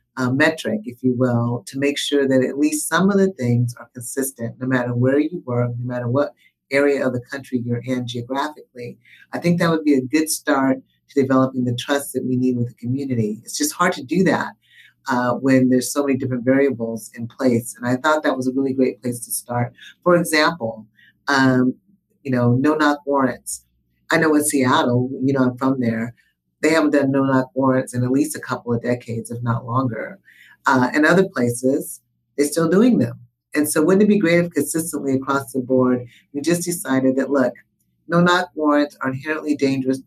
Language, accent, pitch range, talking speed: English, American, 120-150 Hz, 205 wpm